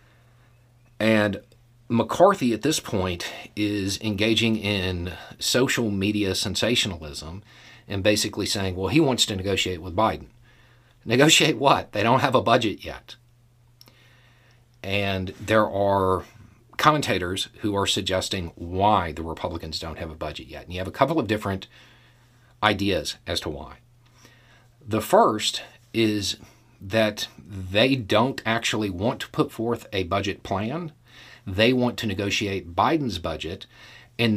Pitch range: 100-120 Hz